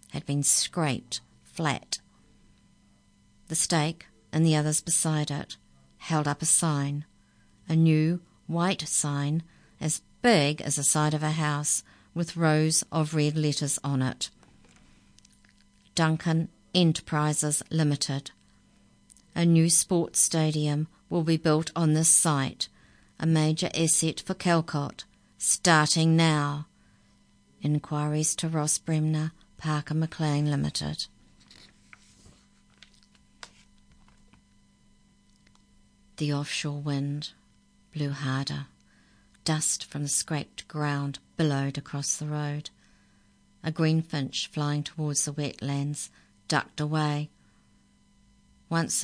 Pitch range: 145-160 Hz